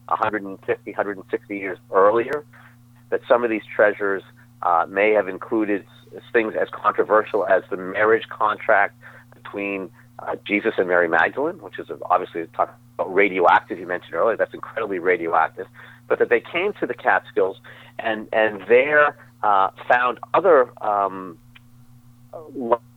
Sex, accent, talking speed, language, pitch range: male, American, 135 wpm, English, 100-120 Hz